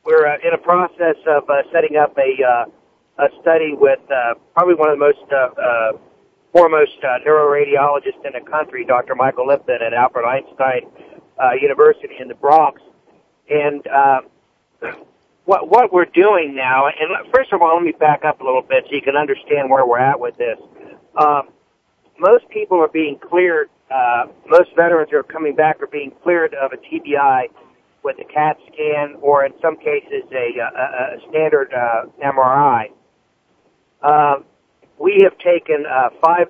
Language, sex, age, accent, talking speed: English, male, 50-69, American, 175 wpm